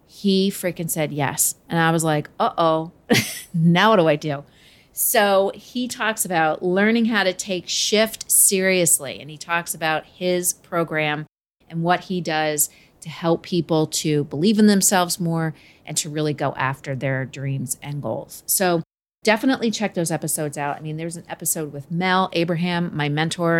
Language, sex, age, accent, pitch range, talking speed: English, female, 30-49, American, 155-195 Hz, 175 wpm